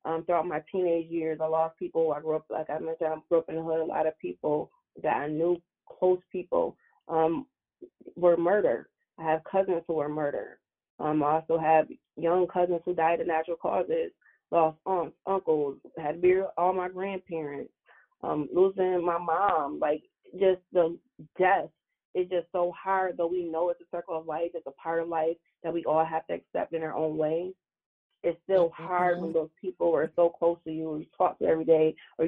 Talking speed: 210 wpm